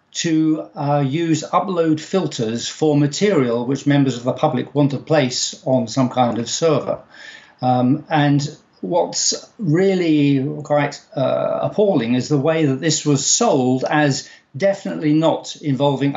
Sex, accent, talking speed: male, British, 140 wpm